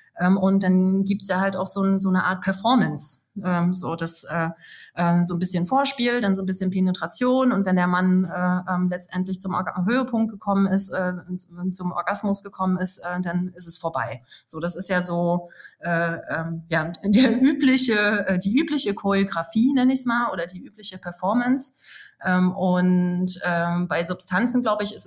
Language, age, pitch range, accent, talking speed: German, 30-49, 175-210 Hz, German, 155 wpm